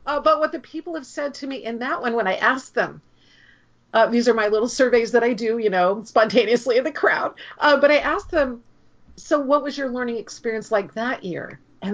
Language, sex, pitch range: English, female, 205-280 Hz